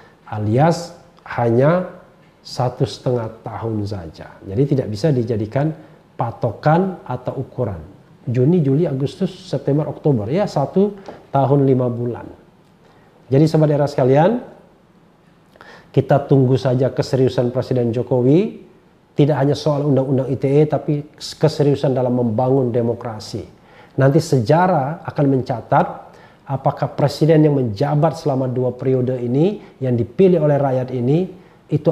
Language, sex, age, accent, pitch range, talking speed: Indonesian, male, 40-59, native, 125-160 Hz, 115 wpm